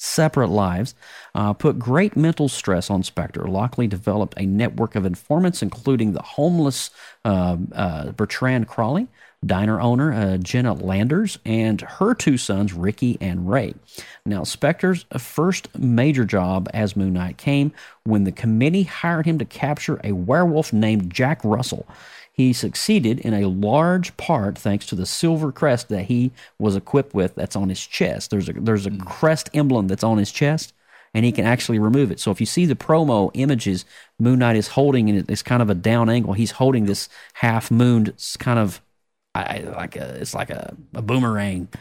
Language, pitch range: English, 105-140 Hz